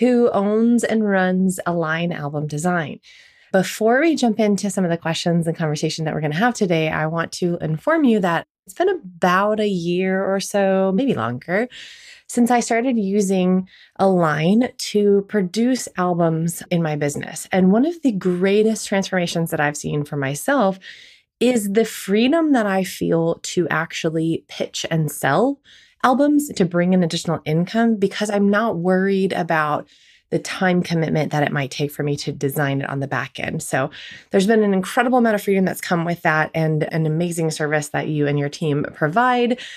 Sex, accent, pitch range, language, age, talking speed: female, American, 165-220 Hz, English, 20-39, 180 wpm